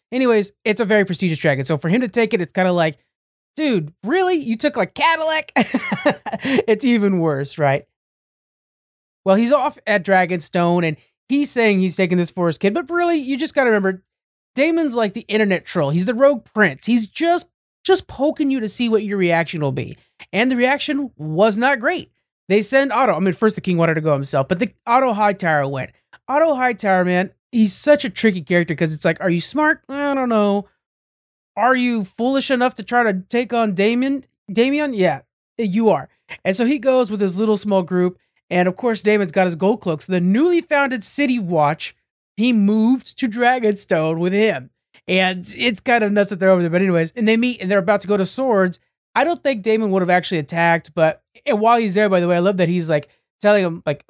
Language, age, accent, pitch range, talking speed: English, 30-49, American, 180-250 Hz, 220 wpm